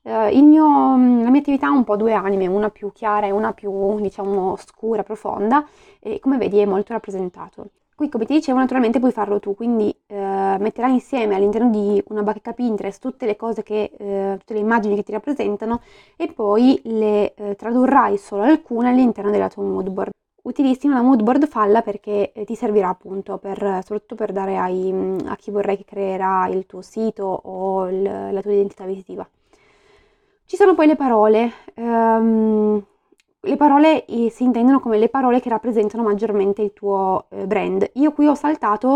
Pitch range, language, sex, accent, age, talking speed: 200-245 Hz, Italian, female, native, 20-39, 180 wpm